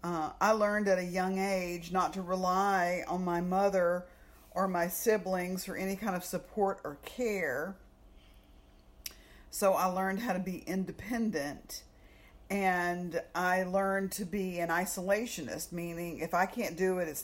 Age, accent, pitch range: 50-69, American, 165-195 Hz